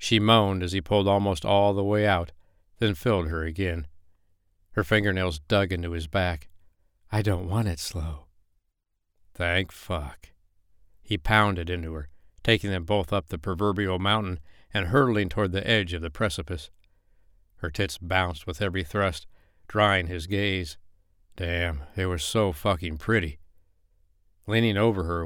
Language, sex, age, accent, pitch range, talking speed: English, male, 60-79, American, 85-100 Hz, 150 wpm